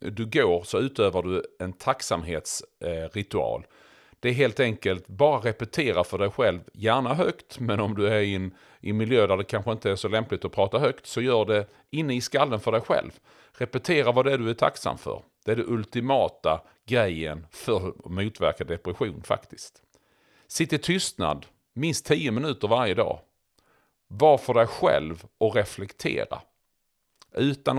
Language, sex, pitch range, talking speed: English, male, 95-125 Hz, 170 wpm